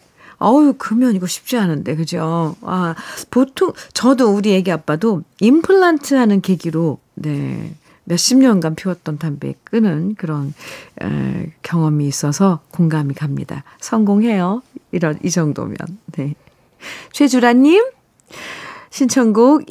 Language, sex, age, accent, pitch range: Korean, female, 40-59, native, 170-240 Hz